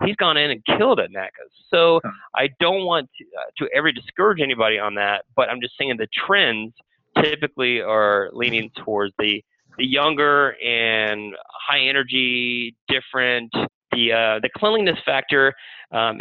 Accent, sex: American, male